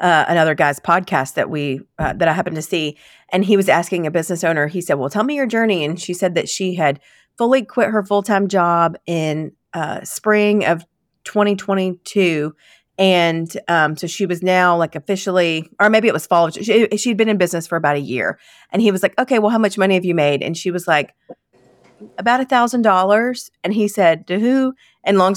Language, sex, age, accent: English, female, 40-59, American